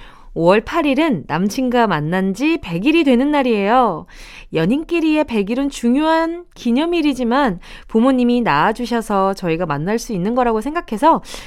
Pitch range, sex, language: 195-295 Hz, female, Korean